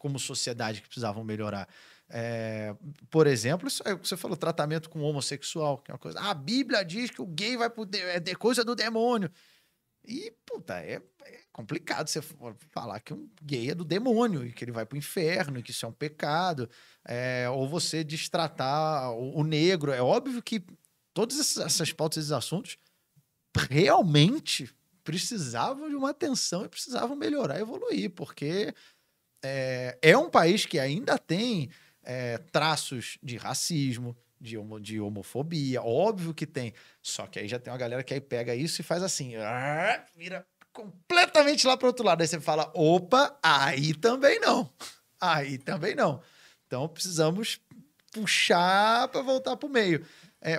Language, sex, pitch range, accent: Portuguese, male, 135-210 Hz, Brazilian